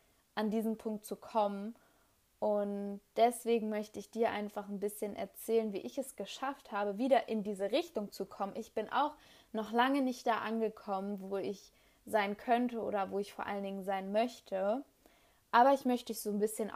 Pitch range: 195-220 Hz